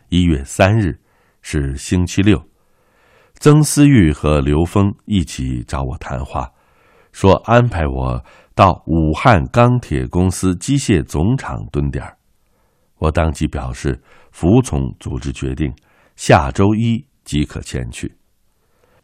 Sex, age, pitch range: male, 60-79, 70-100 Hz